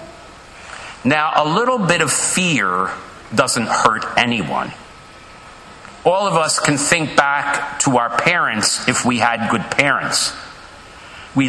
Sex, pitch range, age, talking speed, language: male, 130-185 Hz, 50-69, 125 wpm, English